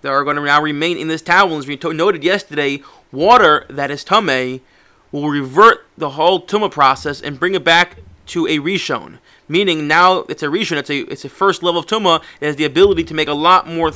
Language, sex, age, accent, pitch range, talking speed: English, male, 30-49, American, 155-215 Hz, 225 wpm